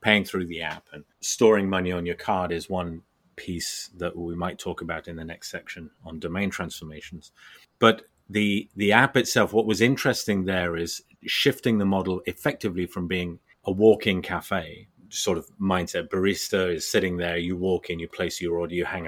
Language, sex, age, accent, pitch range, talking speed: English, male, 30-49, British, 85-105 Hz, 190 wpm